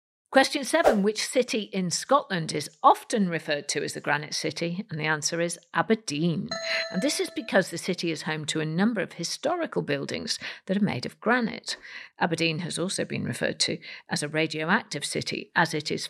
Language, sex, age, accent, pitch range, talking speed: English, female, 50-69, British, 160-230 Hz, 190 wpm